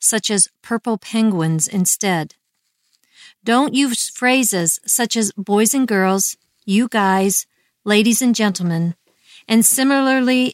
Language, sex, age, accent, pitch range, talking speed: English, female, 50-69, American, 195-240 Hz, 115 wpm